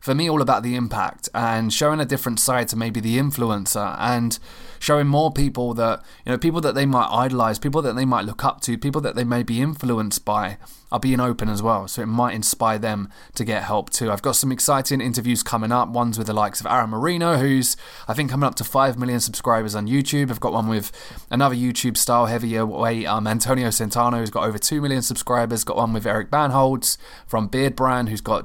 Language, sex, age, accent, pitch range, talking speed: English, male, 20-39, British, 110-130 Hz, 230 wpm